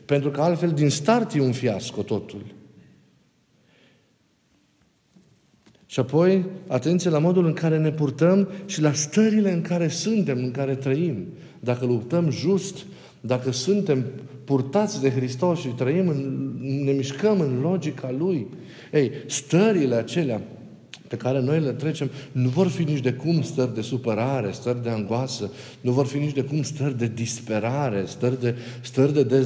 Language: Romanian